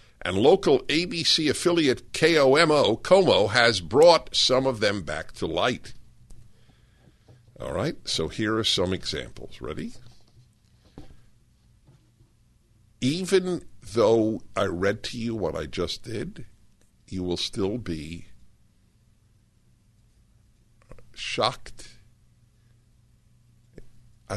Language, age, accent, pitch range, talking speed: English, 50-69, American, 105-120 Hz, 90 wpm